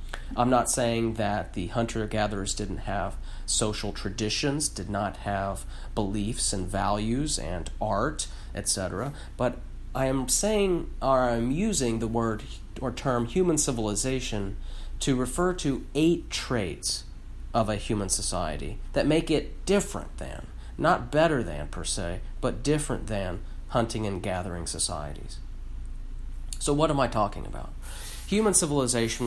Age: 40-59